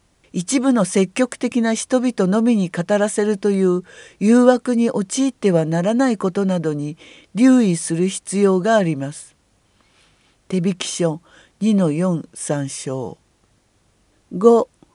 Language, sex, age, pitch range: Japanese, female, 50-69, 165-245 Hz